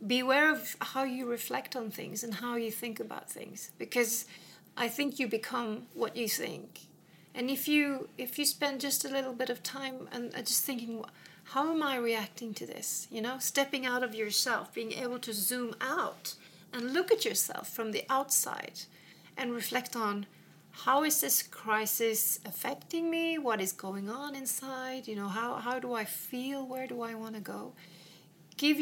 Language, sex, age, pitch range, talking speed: English, female, 40-59, 200-255 Hz, 185 wpm